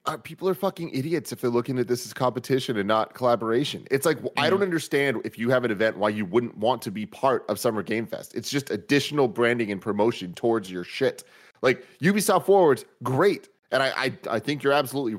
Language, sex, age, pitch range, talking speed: English, male, 30-49, 105-145 Hz, 215 wpm